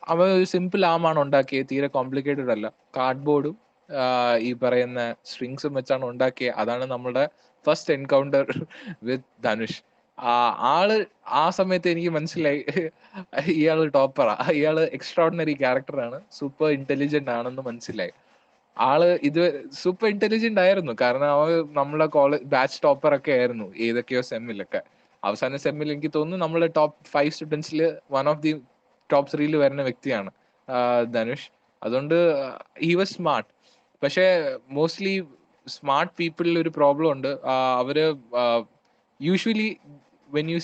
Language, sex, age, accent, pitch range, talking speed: English, male, 20-39, Indian, 130-170 Hz, 90 wpm